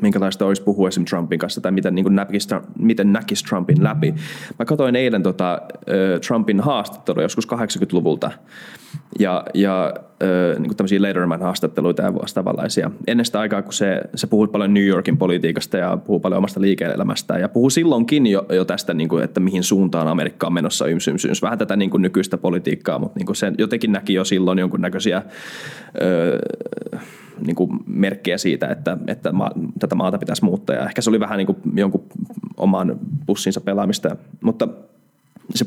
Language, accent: Finnish, native